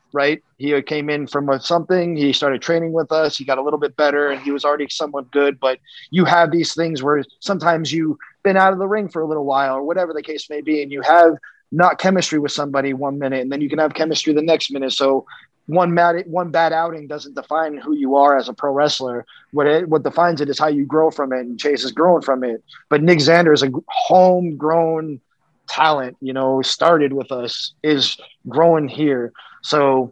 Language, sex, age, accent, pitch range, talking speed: English, male, 20-39, American, 135-160 Hz, 225 wpm